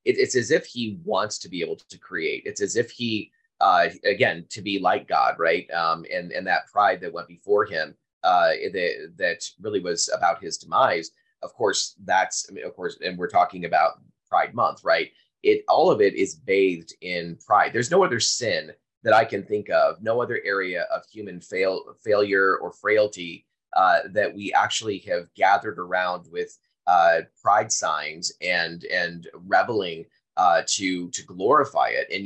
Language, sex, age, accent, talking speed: English, male, 30-49, American, 180 wpm